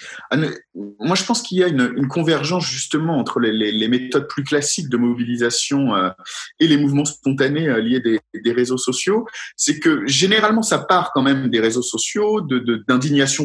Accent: French